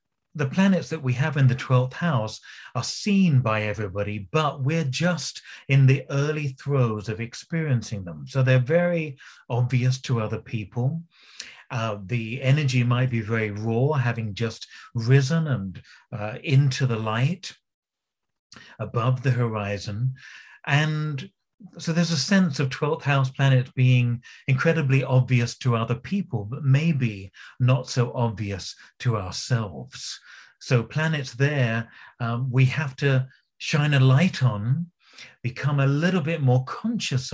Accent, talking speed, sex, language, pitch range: British, 140 wpm, male, English, 120-150 Hz